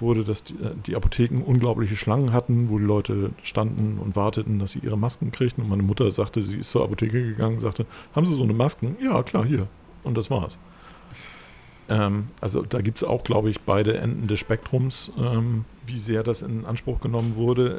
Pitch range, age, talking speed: 100-120 Hz, 50-69, 200 wpm